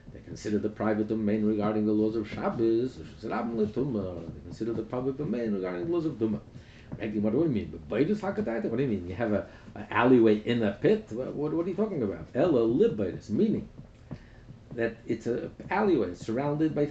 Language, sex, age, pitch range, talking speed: English, male, 50-69, 110-150 Hz, 160 wpm